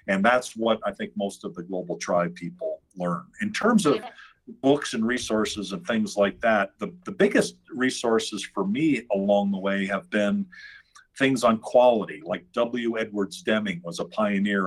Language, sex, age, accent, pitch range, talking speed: English, male, 50-69, American, 100-140 Hz, 175 wpm